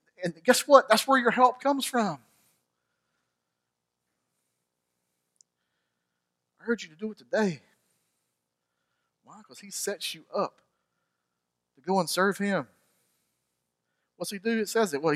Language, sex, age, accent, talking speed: English, male, 40-59, American, 135 wpm